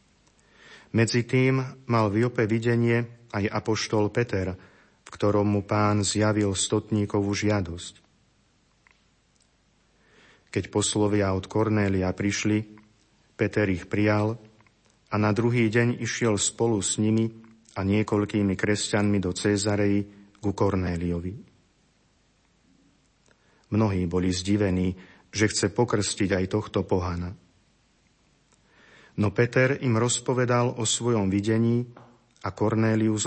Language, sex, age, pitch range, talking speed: Slovak, male, 40-59, 100-110 Hz, 105 wpm